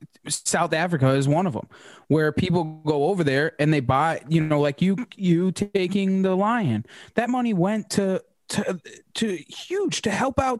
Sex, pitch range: male, 155-220 Hz